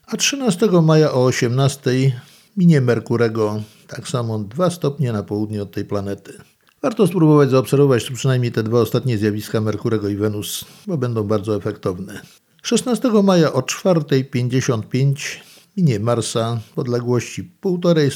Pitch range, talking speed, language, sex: 115-170 Hz, 135 wpm, Polish, male